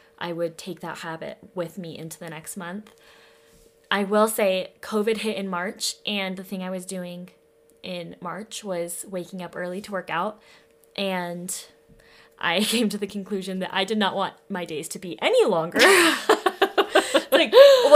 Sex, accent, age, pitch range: female, American, 20-39, 185-225 Hz